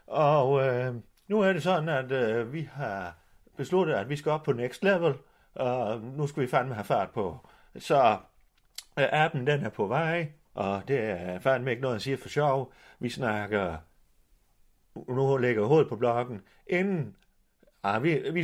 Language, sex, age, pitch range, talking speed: Danish, male, 30-49, 120-175 Hz, 175 wpm